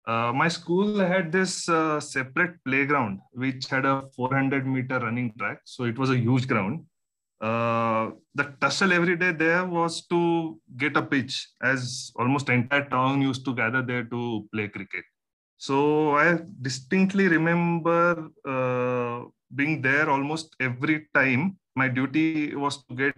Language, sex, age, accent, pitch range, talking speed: English, male, 30-49, Indian, 125-150 Hz, 150 wpm